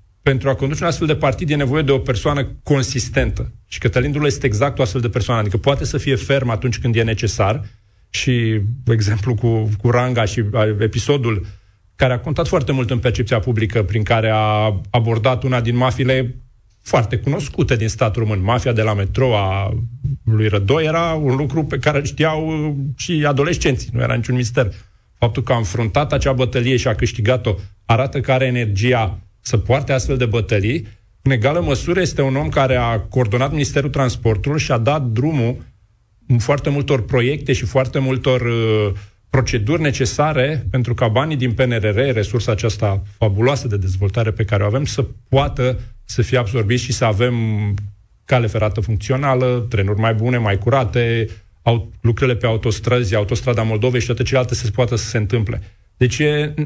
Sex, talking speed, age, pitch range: male, 175 wpm, 40-59, 110-135 Hz